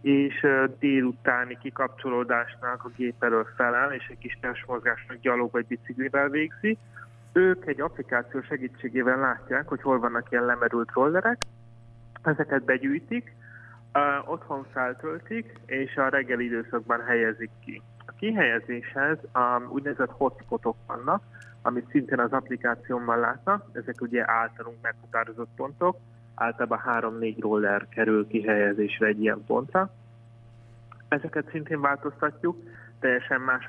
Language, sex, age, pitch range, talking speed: Hungarian, male, 20-39, 115-130 Hz, 115 wpm